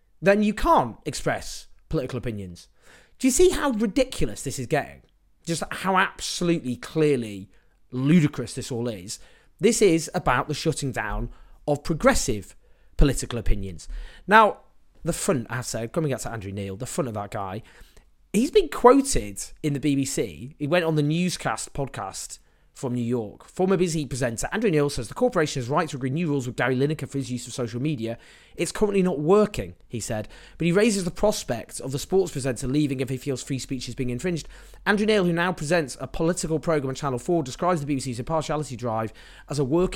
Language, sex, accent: English, male, British